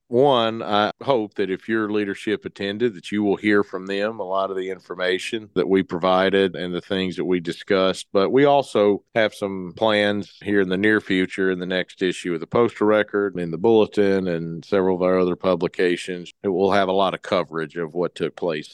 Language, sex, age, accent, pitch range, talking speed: English, male, 40-59, American, 90-100 Hz, 215 wpm